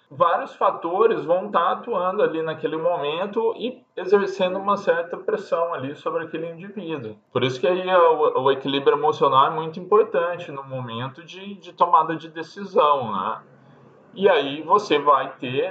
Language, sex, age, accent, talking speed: Portuguese, male, 20-39, Brazilian, 155 wpm